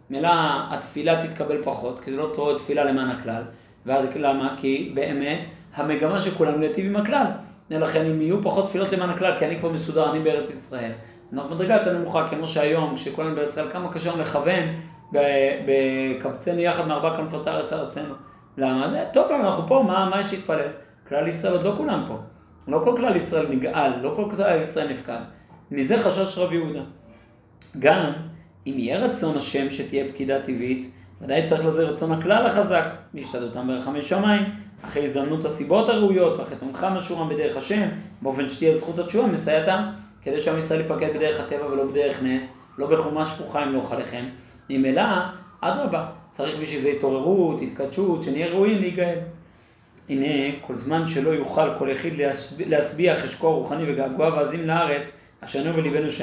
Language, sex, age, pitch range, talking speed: Hebrew, male, 40-59, 140-175 Hz, 160 wpm